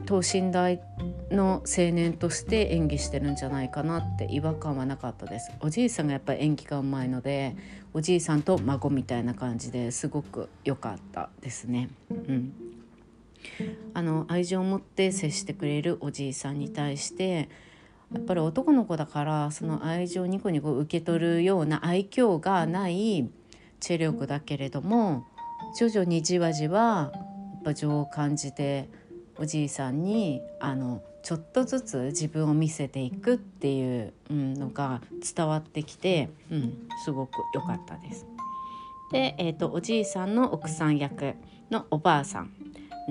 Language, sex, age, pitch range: Japanese, female, 40-59, 140-195 Hz